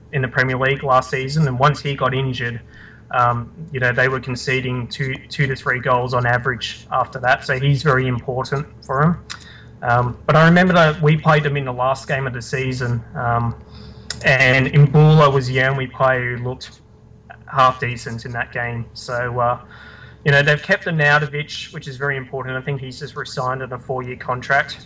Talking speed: 200 wpm